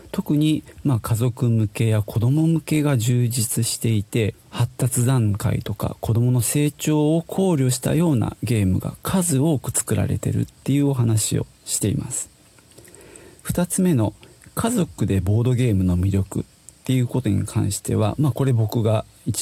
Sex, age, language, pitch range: male, 40-59, Japanese, 110-145 Hz